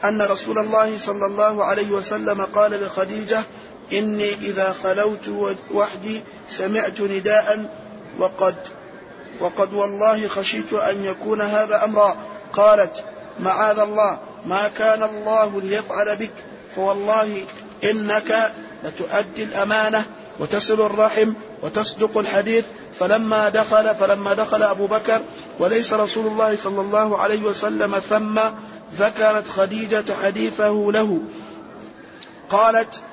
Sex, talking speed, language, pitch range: male, 105 wpm, Arabic, 200-215 Hz